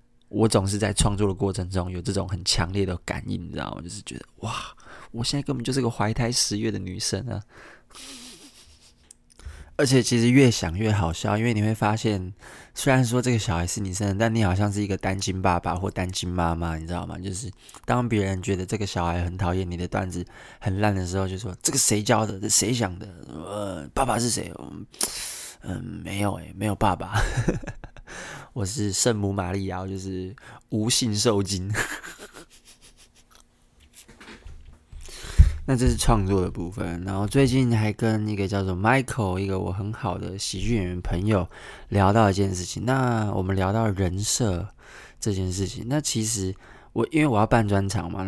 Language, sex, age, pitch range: Chinese, male, 20-39, 95-110 Hz